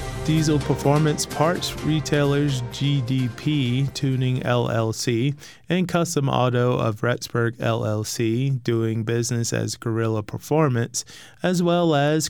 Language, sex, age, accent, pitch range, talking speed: English, male, 20-39, American, 120-145 Hz, 105 wpm